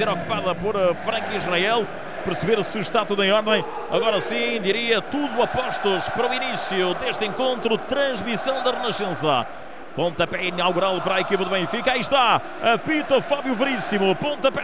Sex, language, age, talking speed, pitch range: male, Portuguese, 40-59, 155 wpm, 185-225 Hz